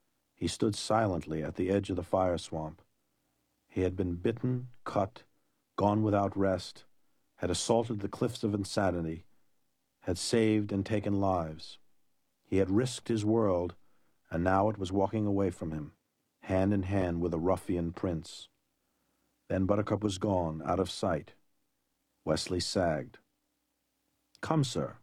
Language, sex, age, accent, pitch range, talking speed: English, male, 50-69, American, 95-125 Hz, 145 wpm